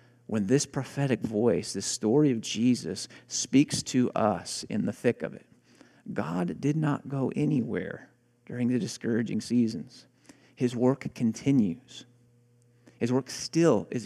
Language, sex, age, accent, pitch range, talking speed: English, male, 40-59, American, 110-130 Hz, 135 wpm